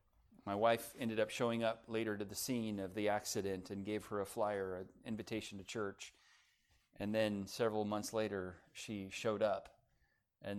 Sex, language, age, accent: male, English, 40-59, American